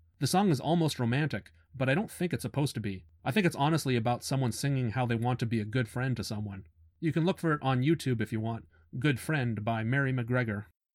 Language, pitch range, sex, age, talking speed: English, 110-135 Hz, male, 30-49, 245 wpm